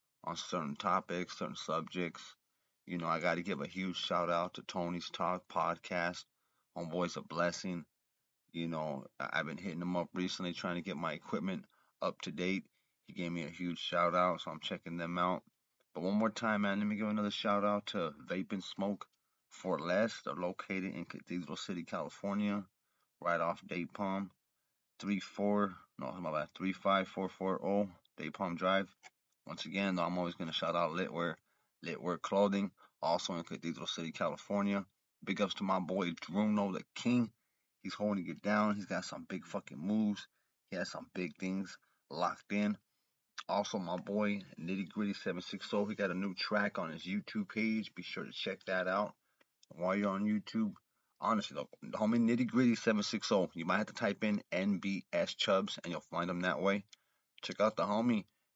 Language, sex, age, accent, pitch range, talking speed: English, male, 30-49, American, 90-105 Hz, 180 wpm